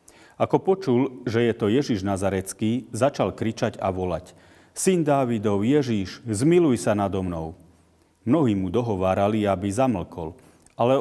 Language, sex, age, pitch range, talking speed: Slovak, male, 40-59, 85-115 Hz, 130 wpm